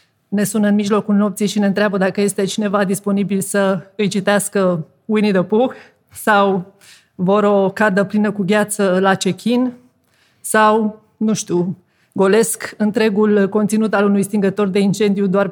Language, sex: Romanian, female